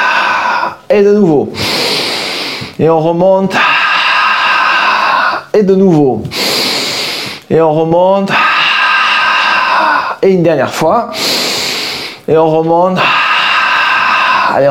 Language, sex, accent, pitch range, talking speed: French, male, French, 160-230 Hz, 80 wpm